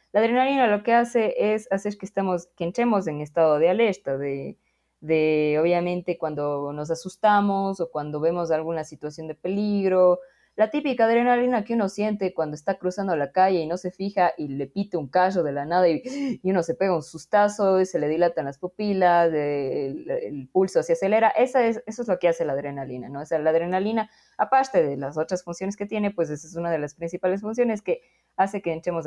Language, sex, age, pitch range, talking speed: Spanish, female, 20-39, 155-205 Hz, 210 wpm